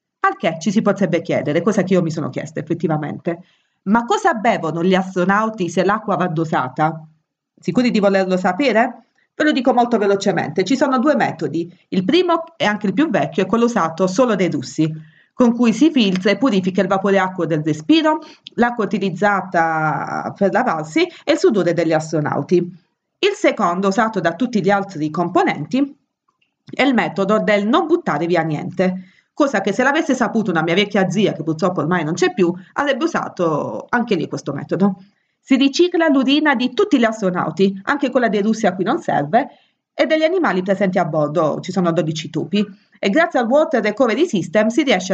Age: 40-59